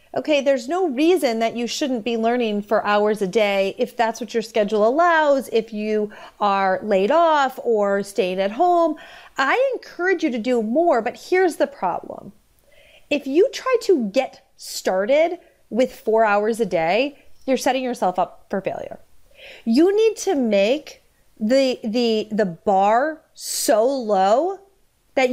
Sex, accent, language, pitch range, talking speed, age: female, American, English, 215-300 Hz, 155 wpm, 30-49